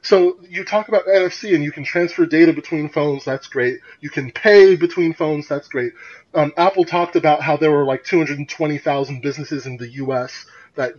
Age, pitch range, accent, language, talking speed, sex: 30-49, 150-245 Hz, American, English, 190 wpm, male